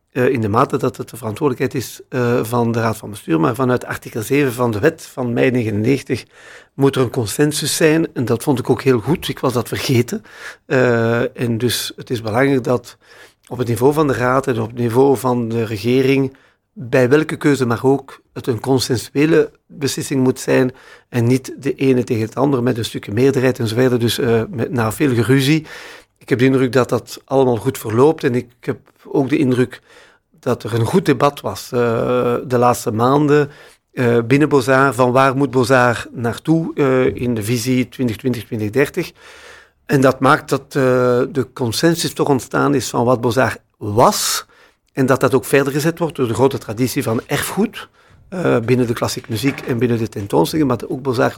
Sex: male